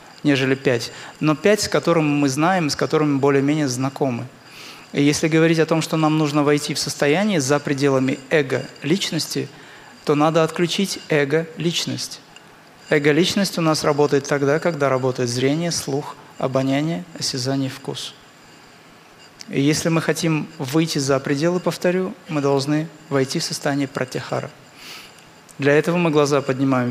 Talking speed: 135 wpm